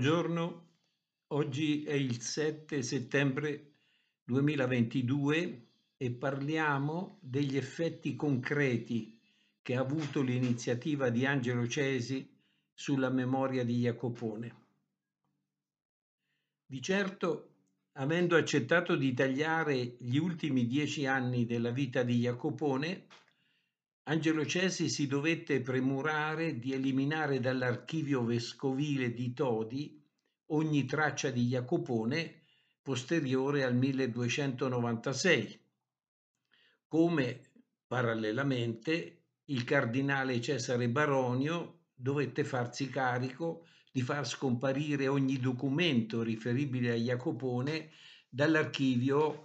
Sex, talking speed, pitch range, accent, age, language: male, 90 wpm, 125-150 Hz, native, 60-79, Italian